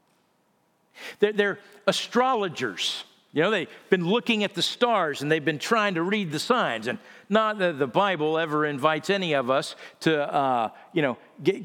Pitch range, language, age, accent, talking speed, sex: 155-215 Hz, English, 50-69, American, 170 wpm, male